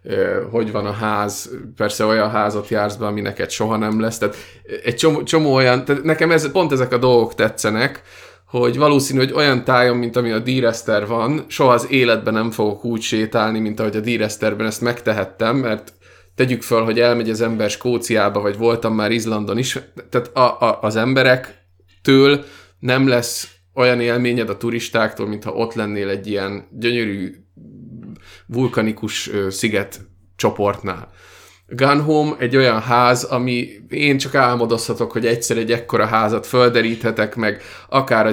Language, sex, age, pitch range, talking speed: Hungarian, male, 20-39, 105-125 Hz, 160 wpm